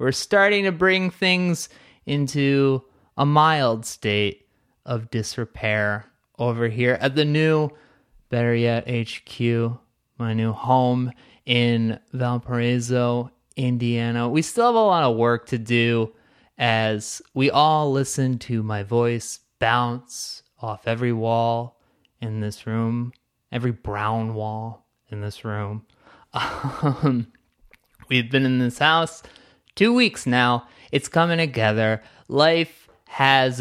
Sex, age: male, 20-39